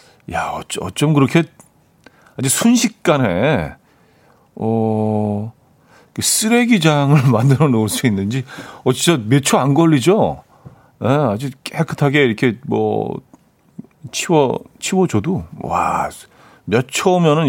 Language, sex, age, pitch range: Korean, male, 40-59, 110-165 Hz